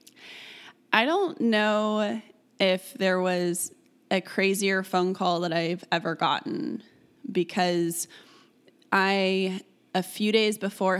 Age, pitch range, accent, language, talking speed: 20-39, 175-210 Hz, American, English, 110 wpm